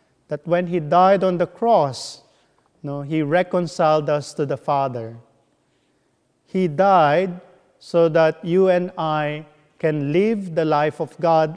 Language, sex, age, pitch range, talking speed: English, male, 30-49, 150-180 Hz, 150 wpm